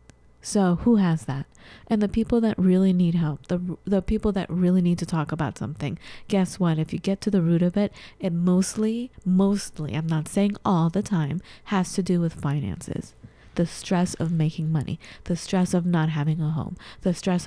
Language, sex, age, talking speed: English, female, 30-49, 205 wpm